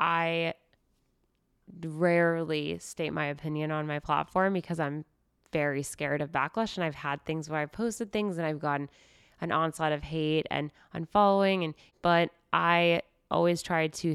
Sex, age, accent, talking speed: female, 20-39, American, 155 wpm